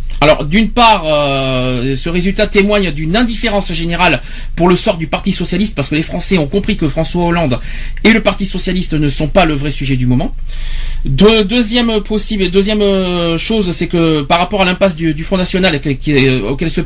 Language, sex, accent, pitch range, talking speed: French, male, French, 150-200 Hz, 185 wpm